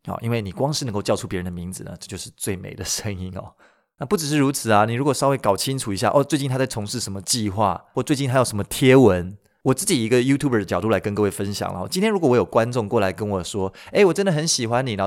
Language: Chinese